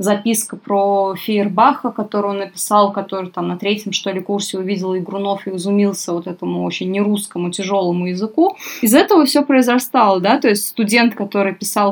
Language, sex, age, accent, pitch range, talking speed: Russian, female, 20-39, native, 195-235 Hz, 165 wpm